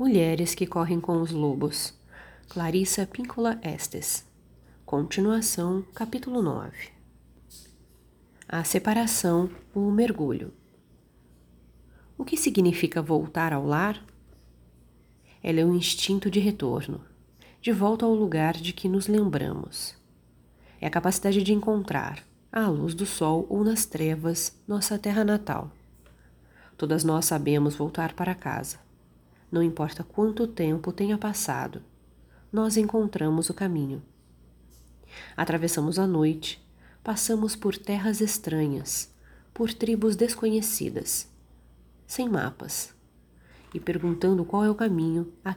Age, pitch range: 30-49, 130-200 Hz